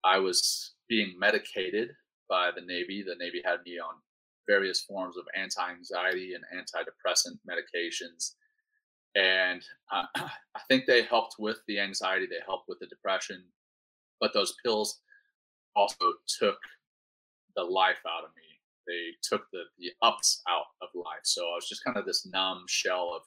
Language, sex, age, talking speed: English, male, 30-49, 155 wpm